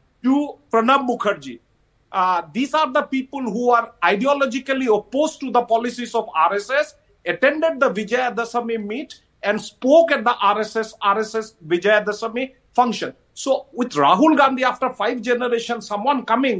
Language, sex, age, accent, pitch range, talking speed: English, male, 50-69, Indian, 225-285 Hz, 135 wpm